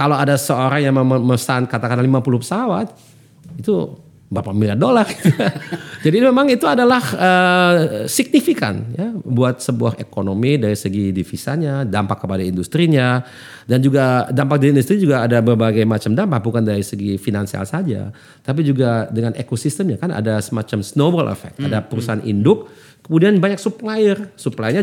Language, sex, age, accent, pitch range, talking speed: Indonesian, male, 40-59, native, 115-160 Hz, 145 wpm